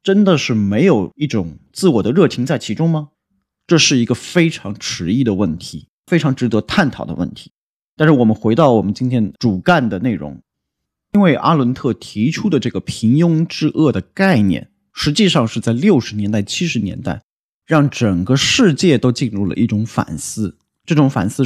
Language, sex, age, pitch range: Chinese, male, 30-49, 110-160 Hz